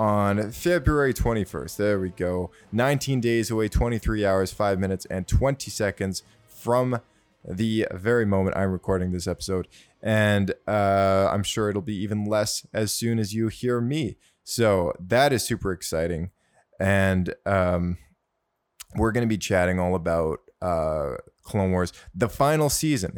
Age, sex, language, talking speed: 20-39, male, English, 150 wpm